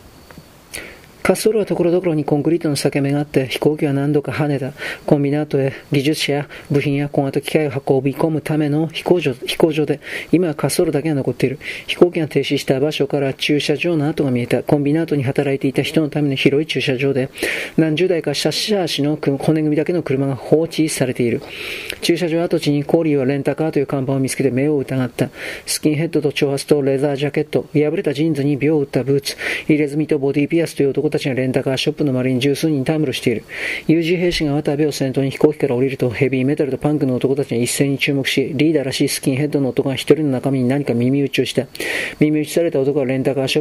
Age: 40-59